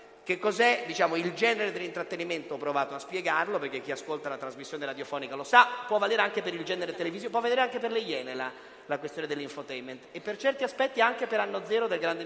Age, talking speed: 40-59, 220 wpm